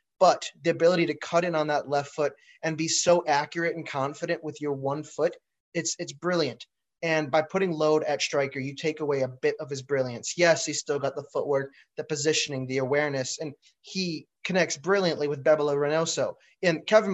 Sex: male